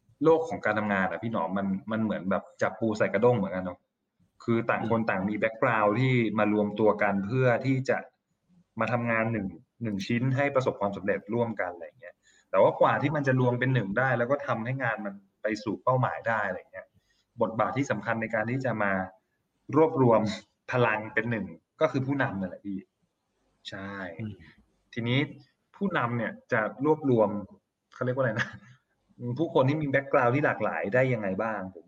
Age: 20-39